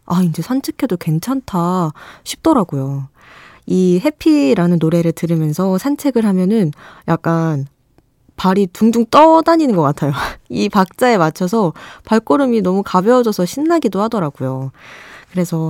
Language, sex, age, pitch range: Korean, female, 20-39, 160-245 Hz